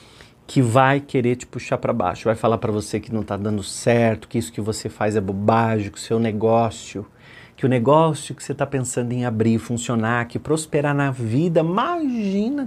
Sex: male